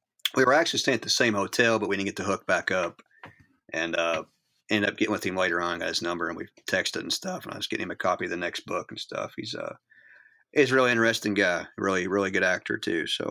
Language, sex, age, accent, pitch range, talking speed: English, male, 30-49, American, 100-125 Hz, 265 wpm